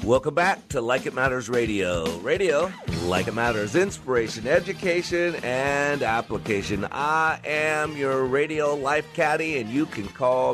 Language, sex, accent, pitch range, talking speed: English, male, American, 115-155 Hz, 140 wpm